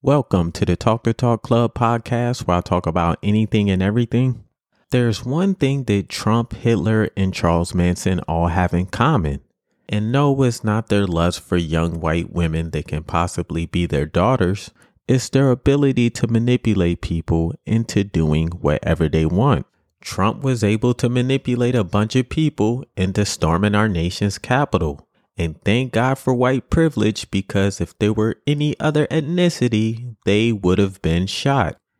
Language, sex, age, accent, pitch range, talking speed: English, male, 30-49, American, 90-125 Hz, 160 wpm